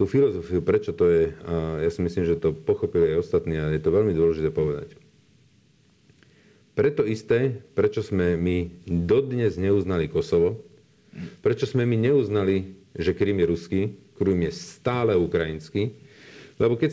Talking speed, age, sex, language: 150 wpm, 50-69, male, Slovak